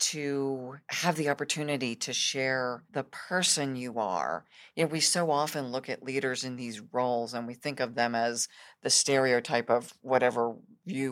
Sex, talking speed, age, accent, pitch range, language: female, 160 wpm, 50-69, American, 120-140 Hz, English